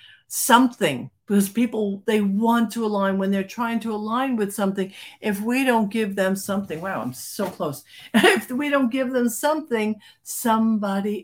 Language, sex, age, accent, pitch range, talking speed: English, female, 60-79, American, 175-220 Hz, 165 wpm